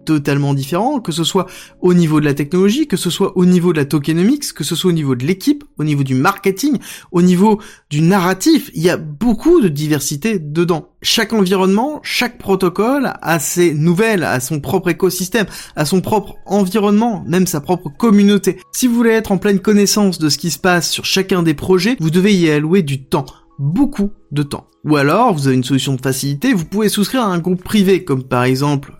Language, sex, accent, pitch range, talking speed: French, male, French, 150-200 Hz, 210 wpm